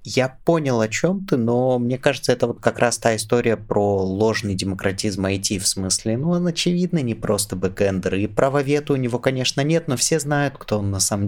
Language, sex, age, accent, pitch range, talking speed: Russian, male, 20-39, native, 100-125 Hz, 205 wpm